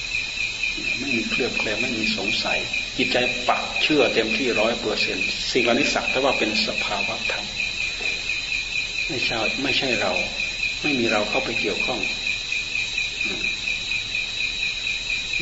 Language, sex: Thai, male